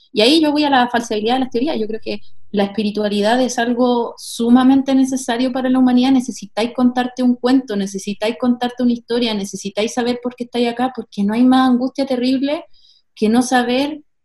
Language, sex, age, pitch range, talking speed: Spanish, female, 20-39, 220-255 Hz, 190 wpm